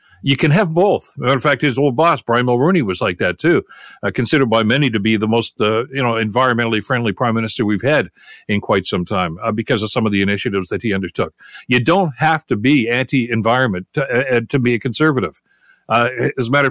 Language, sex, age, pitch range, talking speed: English, male, 60-79, 115-145 Hz, 235 wpm